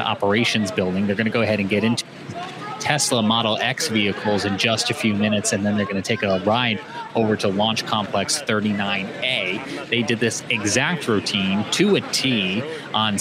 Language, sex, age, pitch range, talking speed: English, male, 30-49, 100-120 Hz, 185 wpm